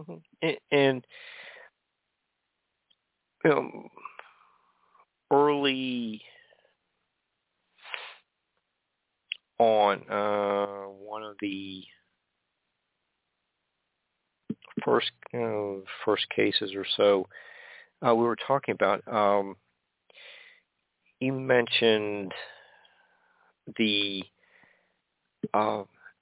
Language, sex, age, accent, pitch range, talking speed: English, male, 50-69, American, 100-115 Hz, 60 wpm